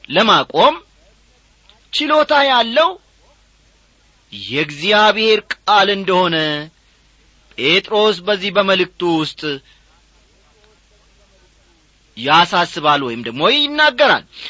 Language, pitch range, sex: Amharic, 150-220 Hz, male